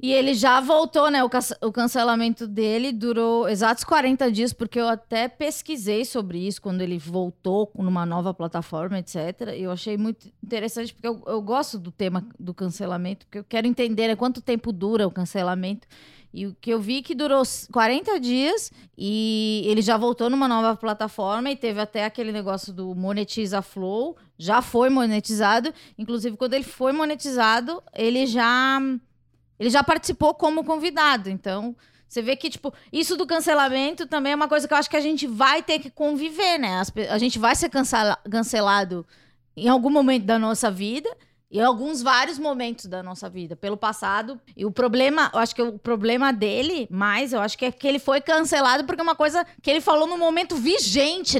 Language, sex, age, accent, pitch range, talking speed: Portuguese, female, 20-39, Brazilian, 210-270 Hz, 185 wpm